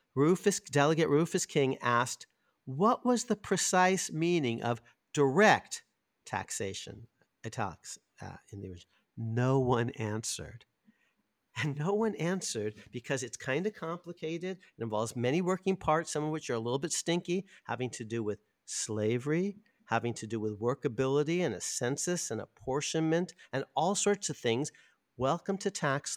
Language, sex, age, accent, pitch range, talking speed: English, male, 50-69, American, 120-175 Hz, 145 wpm